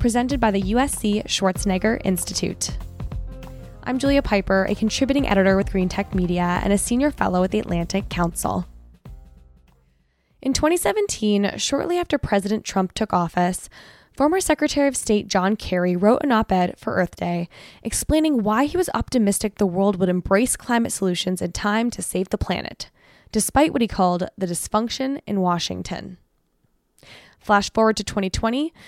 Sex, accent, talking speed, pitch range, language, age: female, American, 150 wpm, 185-255 Hz, English, 10-29